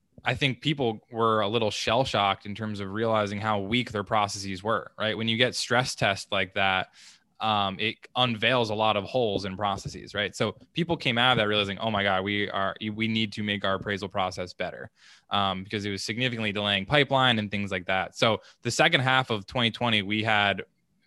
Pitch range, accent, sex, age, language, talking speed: 105-125 Hz, American, male, 20-39, English, 210 wpm